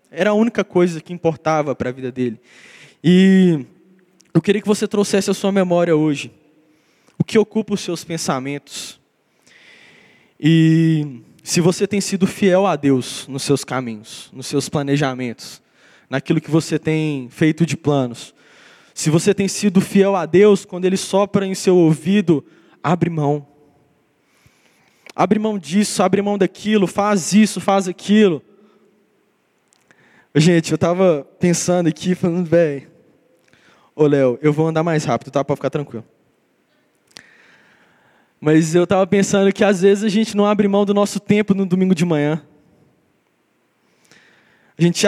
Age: 20-39